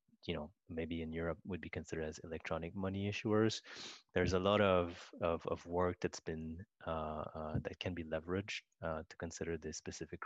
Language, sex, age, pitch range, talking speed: English, male, 30-49, 80-90 Hz, 185 wpm